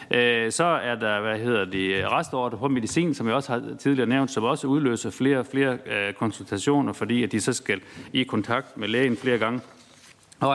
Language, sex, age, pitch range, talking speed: Danish, male, 60-79, 110-135 Hz, 190 wpm